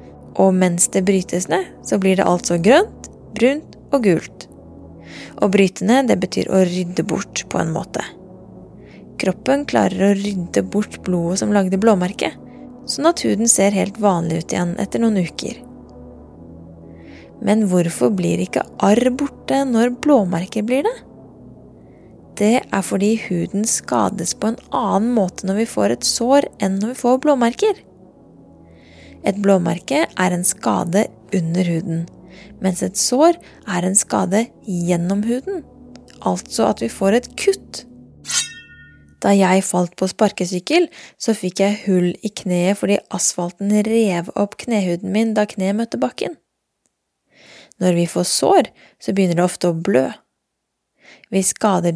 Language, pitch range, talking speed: English, 180-225 Hz, 140 wpm